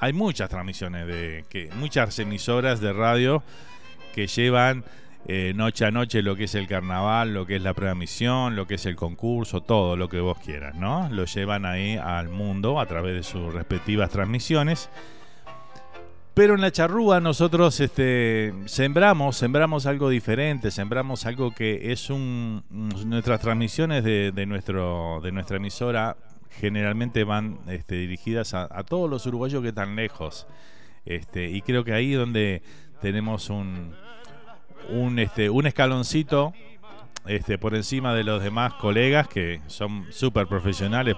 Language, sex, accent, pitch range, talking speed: Spanish, male, Argentinian, 95-125 Hz, 155 wpm